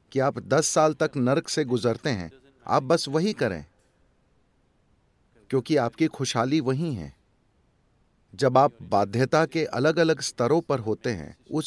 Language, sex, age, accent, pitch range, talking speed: English, male, 40-59, Indian, 105-155 Hz, 145 wpm